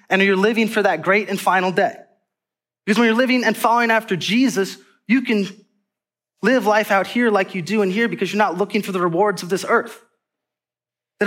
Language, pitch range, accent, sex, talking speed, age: English, 185-230 Hz, American, male, 210 wpm, 20-39